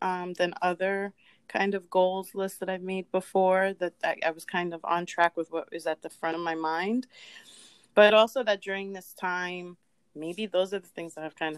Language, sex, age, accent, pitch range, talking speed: English, female, 30-49, American, 160-185 Hz, 220 wpm